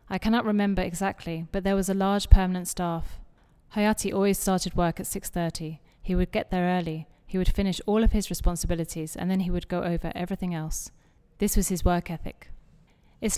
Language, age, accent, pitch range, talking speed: English, 30-49, British, 170-200 Hz, 195 wpm